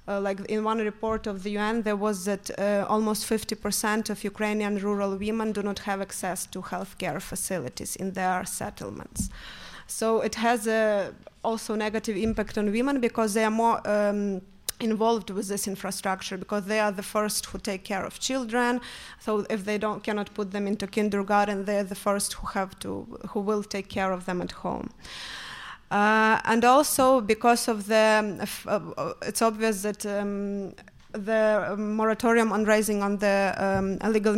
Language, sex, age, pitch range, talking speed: German, female, 20-39, 200-225 Hz, 170 wpm